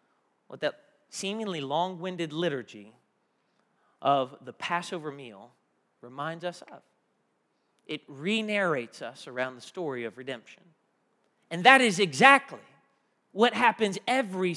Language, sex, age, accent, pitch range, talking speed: English, male, 40-59, American, 185-255 Hz, 110 wpm